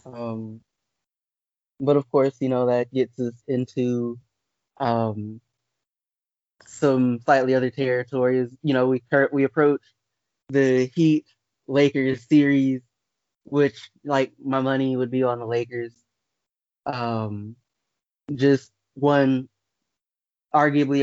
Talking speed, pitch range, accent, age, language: 105 wpm, 120-150 Hz, American, 20-39, English